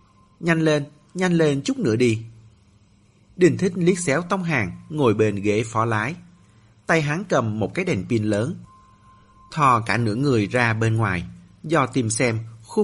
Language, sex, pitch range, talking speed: Vietnamese, male, 105-150 Hz, 175 wpm